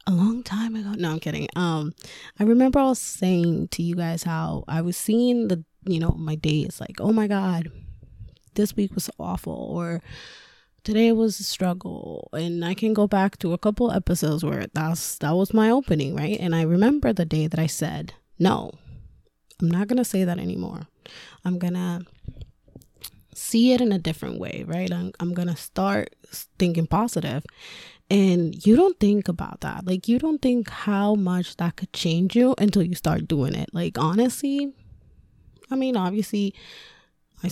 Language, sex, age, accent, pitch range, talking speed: English, female, 20-39, American, 170-210 Hz, 180 wpm